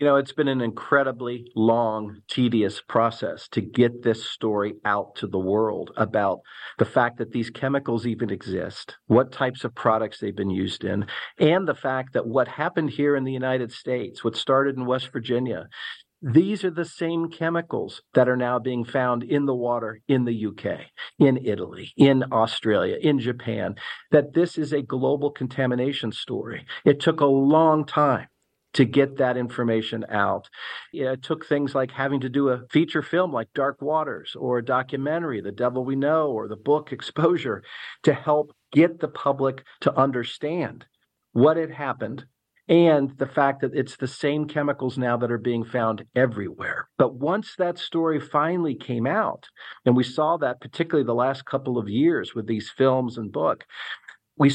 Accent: American